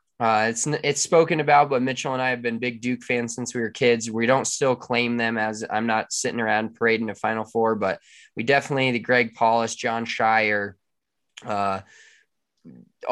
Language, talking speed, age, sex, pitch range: English, 190 wpm, 20-39, male, 110-125 Hz